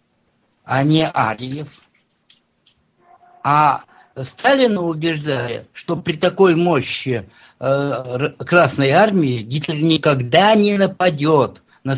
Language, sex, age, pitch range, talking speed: Russian, male, 50-69, 125-165 Hz, 90 wpm